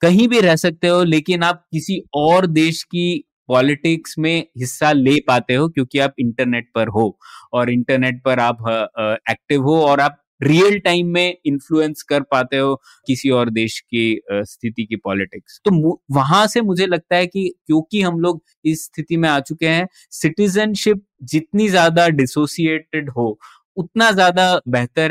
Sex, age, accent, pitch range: male, 20-39, native, 140-180 Hz